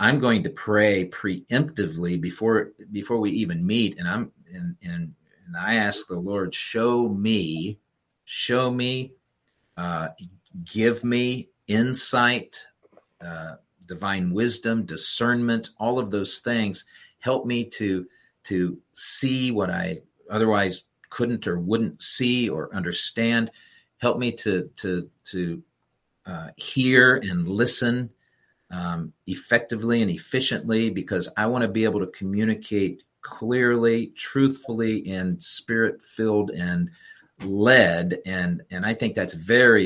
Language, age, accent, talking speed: English, 50-69, American, 125 wpm